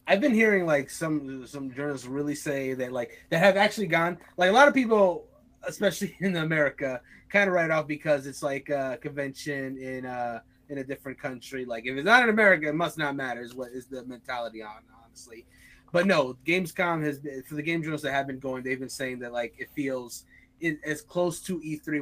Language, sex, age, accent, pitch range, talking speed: English, male, 20-39, American, 130-175 Hz, 215 wpm